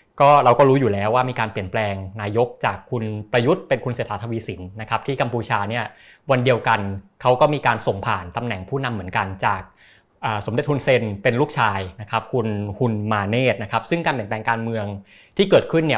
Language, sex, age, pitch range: Thai, male, 20-39, 105-135 Hz